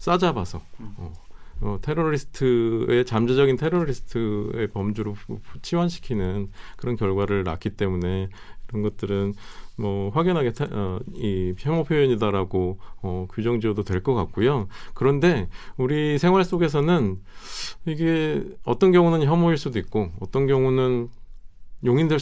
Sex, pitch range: male, 95-135 Hz